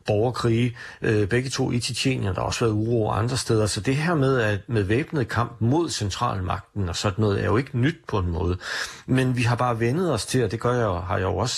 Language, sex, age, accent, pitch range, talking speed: Danish, male, 40-59, native, 105-125 Hz, 245 wpm